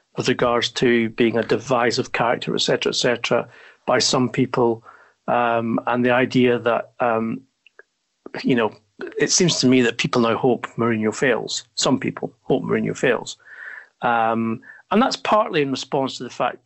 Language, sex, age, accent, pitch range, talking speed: English, male, 40-59, British, 115-125 Hz, 165 wpm